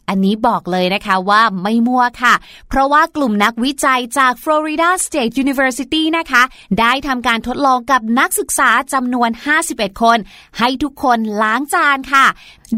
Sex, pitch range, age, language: female, 235-300 Hz, 20-39, Thai